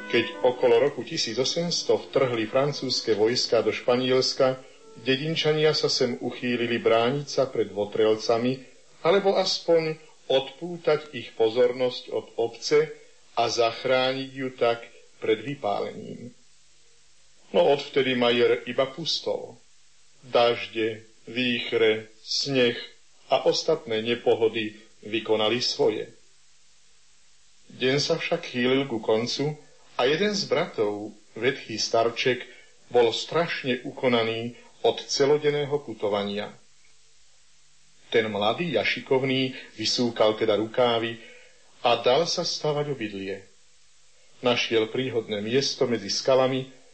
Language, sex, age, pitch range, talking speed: Slovak, male, 50-69, 115-160 Hz, 100 wpm